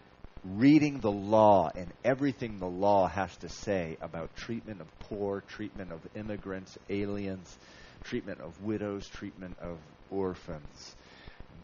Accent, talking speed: American, 130 wpm